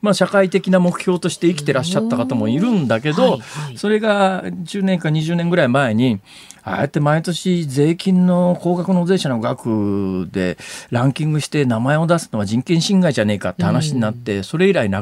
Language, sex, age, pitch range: Japanese, male, 40-59, 125-195 Hz